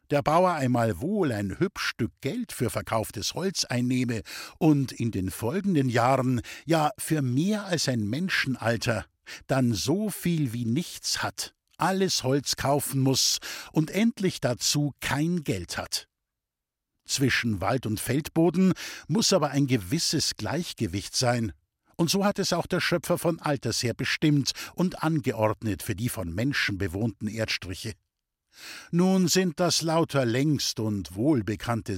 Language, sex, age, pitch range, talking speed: German, male, 60-79, 110-155 Hz, 140 wpm